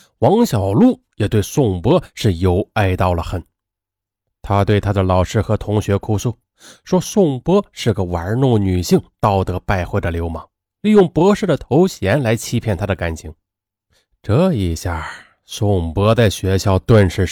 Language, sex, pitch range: Chinese, male, 90-110 Hz